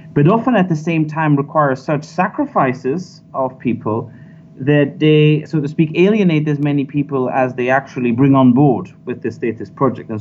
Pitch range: 130-160 Hz